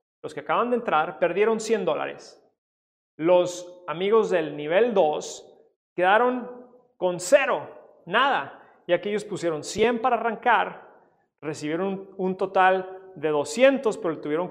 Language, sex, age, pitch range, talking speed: Spanish, male, 30-49, 155-210 Hz, 125 wpm